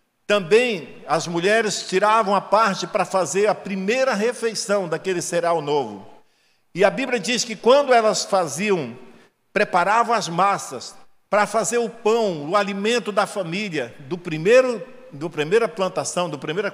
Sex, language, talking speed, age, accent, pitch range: male, Portuguese, 140 wpm, 60-79, Brazilian, 155-215 Hz